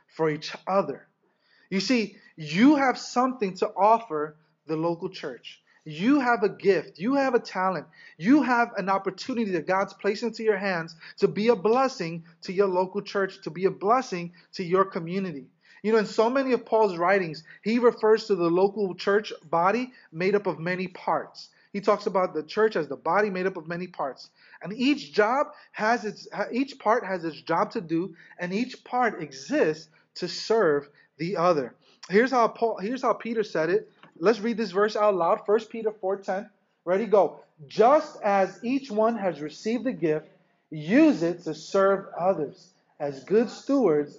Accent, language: American, English